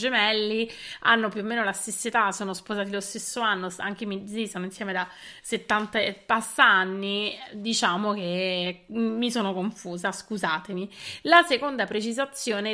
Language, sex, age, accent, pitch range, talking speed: Italian, female, 30-49, native, 190-235 Hz, 140 wpm